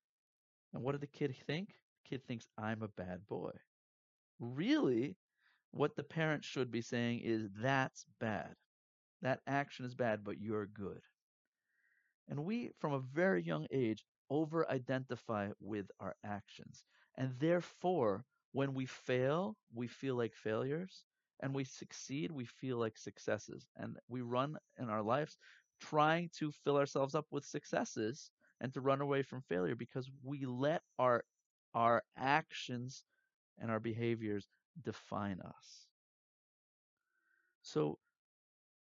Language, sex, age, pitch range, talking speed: English, male, 50-69, 115-155 Hz, 135 wpm